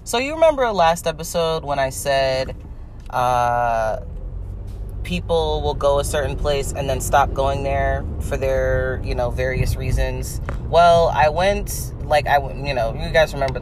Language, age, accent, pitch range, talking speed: English, 30-49, American, 115-175 Hz, 160 wpm